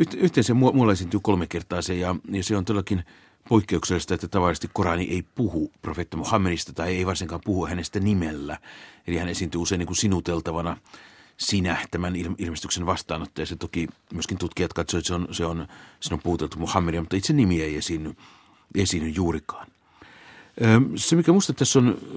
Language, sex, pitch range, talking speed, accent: Finnish, male, 85-100 Hz, 165 wpm, native